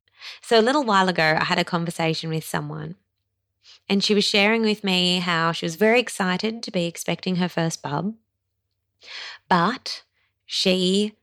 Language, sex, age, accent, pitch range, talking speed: English, female, 20-39, Australian, 160-200 Hz, 160 wpm